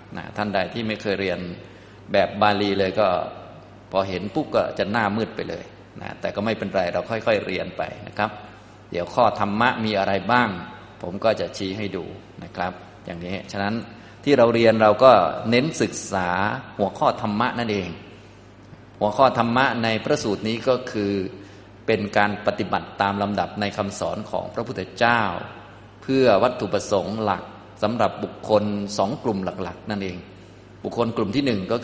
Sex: male